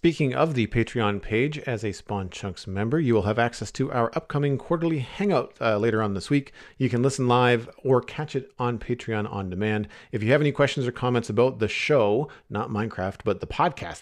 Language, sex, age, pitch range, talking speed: English, male, 40-59, 100-130 Hz, 215 wpm